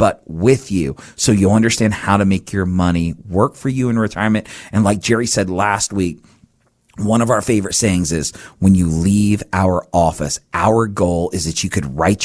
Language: English